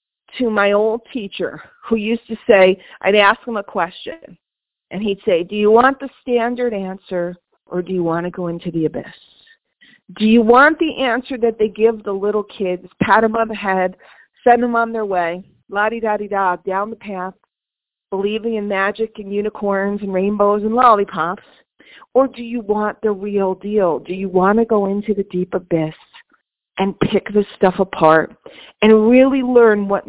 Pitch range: 195-235 Hz